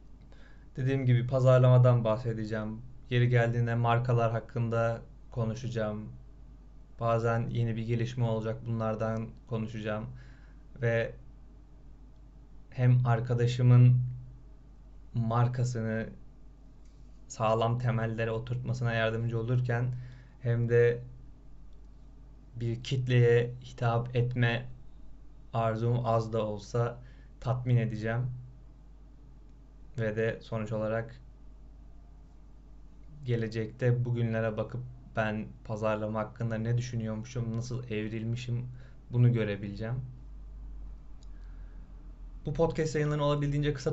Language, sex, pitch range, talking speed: Turkish, male, 115-130 Hz, 80 wpm